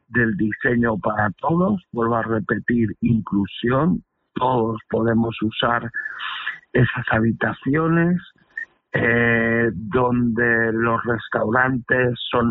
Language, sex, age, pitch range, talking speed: Spanish, male, 60-79, 115-130 Hz, 85 wpm